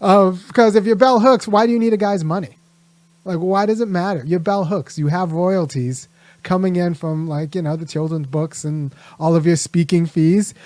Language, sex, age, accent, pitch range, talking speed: English, male, 30-49, American, 170-230 Hz, 225 wpm